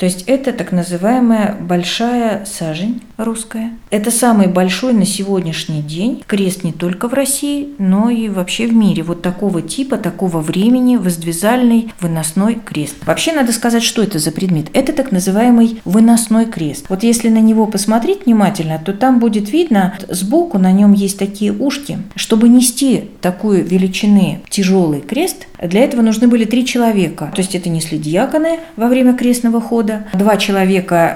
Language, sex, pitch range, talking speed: Russian, female, 175-230 Hz, 160 wpm